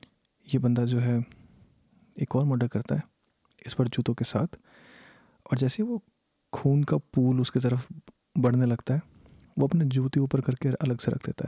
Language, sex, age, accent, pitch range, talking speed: Hindi, male, 30-49, native, 125-155 Hz, 180 wpm